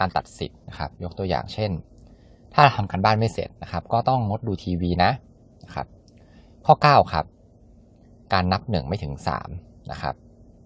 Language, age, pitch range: Thai, 20-39, 85-115 Hz